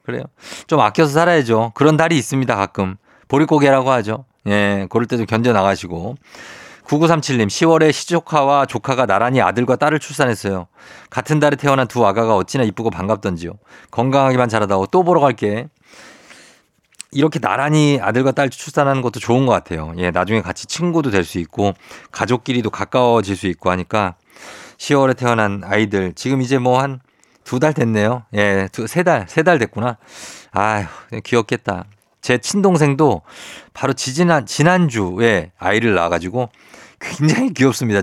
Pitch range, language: 105-150 Hz, Korean